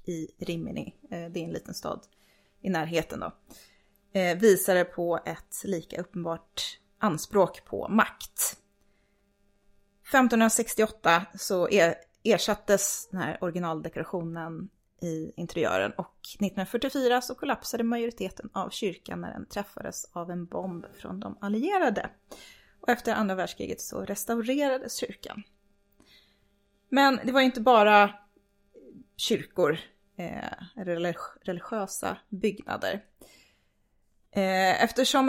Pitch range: 170-240 Hz